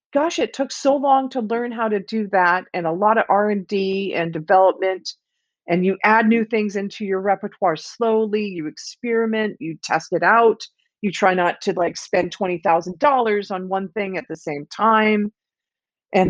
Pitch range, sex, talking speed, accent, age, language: 170-215 Hz, female, 190 wpm, American, 40-59, English